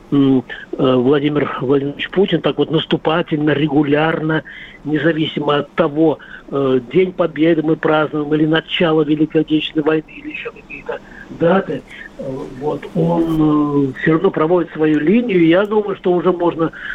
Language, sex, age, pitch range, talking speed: Russian, male, 50-69, 150-175 Hz, 125 wpm